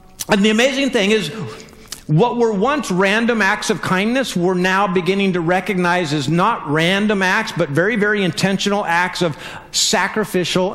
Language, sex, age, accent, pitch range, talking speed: English, male, 50-69, American, 170-215 Hz, 155 wpm